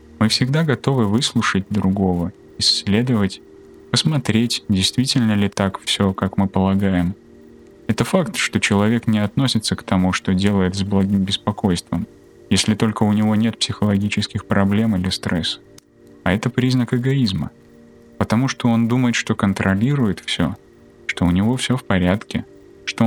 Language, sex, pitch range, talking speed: Russian, male, 95-115 Hz, 140 wpm